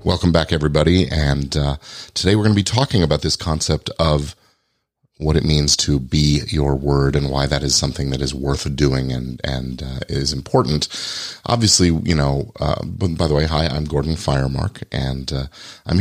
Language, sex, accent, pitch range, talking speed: English, male, American, 75-95 Hz, 185 wpm